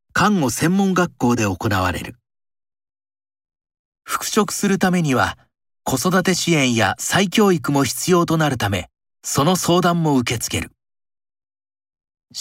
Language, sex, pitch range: Japanese, male, 115-170 Hz